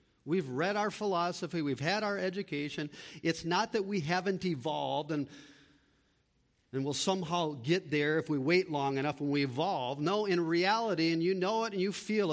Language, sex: English, male